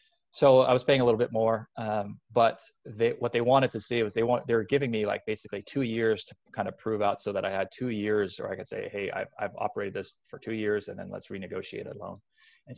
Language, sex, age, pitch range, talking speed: English, male, 20-39, 100-130 Hz, 270 wpm